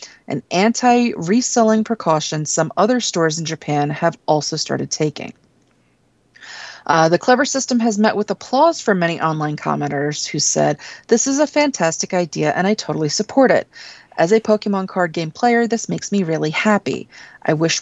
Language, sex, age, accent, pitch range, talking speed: English, female, 30-49, American, 160-220 Hz, 165 wpm